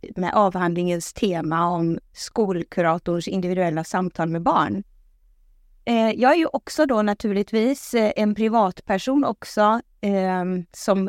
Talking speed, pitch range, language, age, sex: 105 wpm, 185-225 Hz, Swedish, 20-39, female